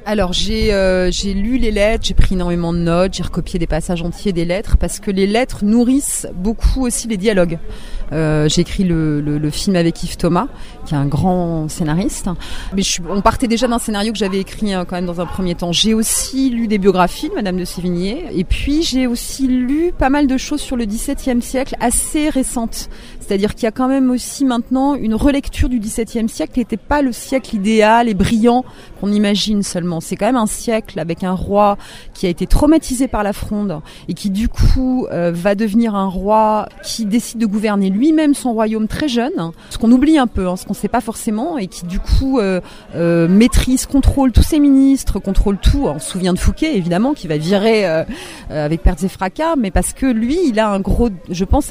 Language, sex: French, female